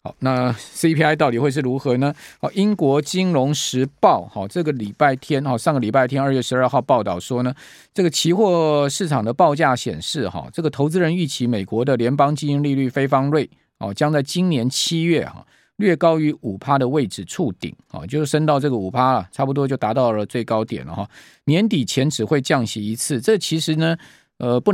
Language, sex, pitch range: Chinese, male, 120-150 Hz